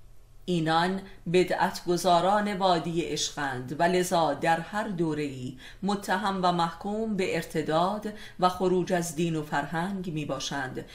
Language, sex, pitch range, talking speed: Persian, female, 150-185 Hz, 120 wpm